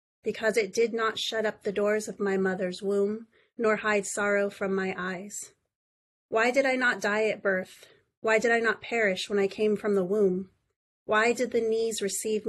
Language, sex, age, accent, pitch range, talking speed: English, female, 30-49, American, 195-225 Hz, 195 wpm